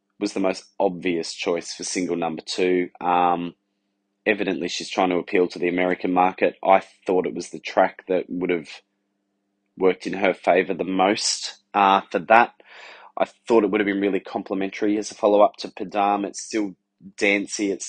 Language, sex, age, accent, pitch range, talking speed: English, male, 20-39, Australian, 95-105 Hz, 180 wpm